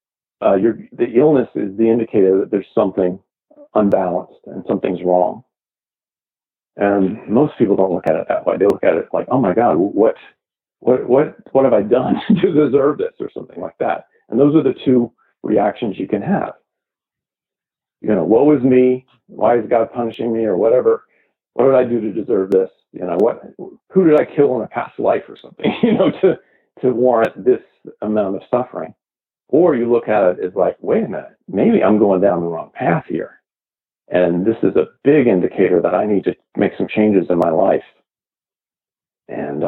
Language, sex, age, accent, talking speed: English, male, 50-69, American, 195 wpm